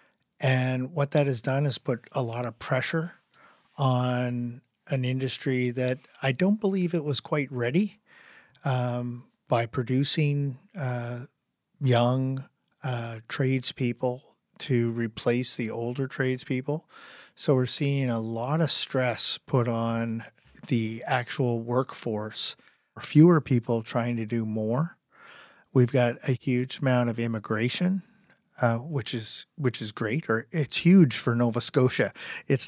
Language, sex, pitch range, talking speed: English, male, 115-140 Hz, 130 wpm